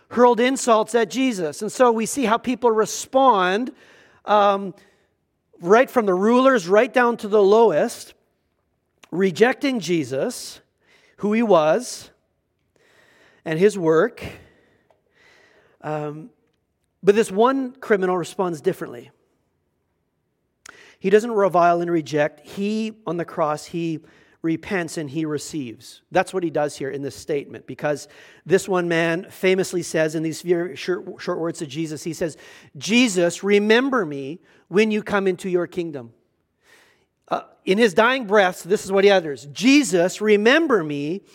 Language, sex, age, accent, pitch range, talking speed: English, male, 40-59, American, 180-245 Hz, 140 wpm